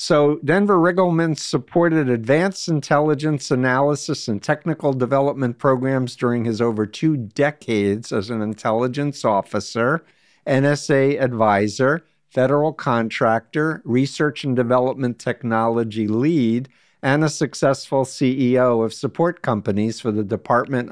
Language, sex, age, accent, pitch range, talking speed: English, male, 50-69, American, 115-145 Hz, 110 wpm